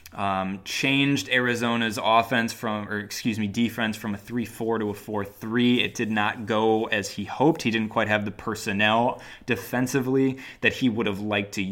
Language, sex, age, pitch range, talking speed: English, male, 20-39, 100-115 Hz, 185 wpm